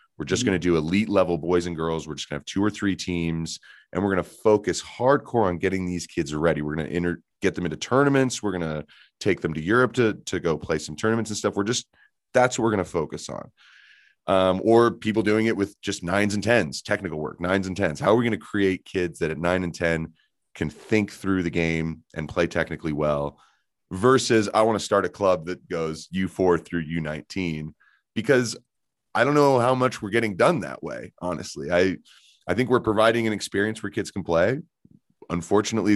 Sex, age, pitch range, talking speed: male, 30-49, 85-110 Hz, 225 wpm